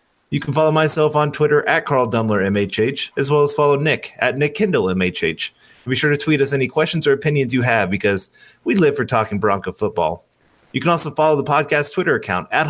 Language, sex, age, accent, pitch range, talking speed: English, male, 30-49, American, 115-150 Hz, 220 wpm